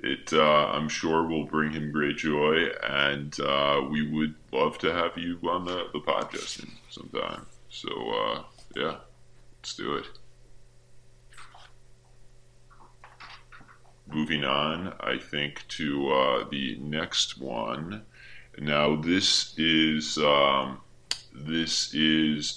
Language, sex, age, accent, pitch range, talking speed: English, female, 10-29, American, 70-80 Hz, 115 wpm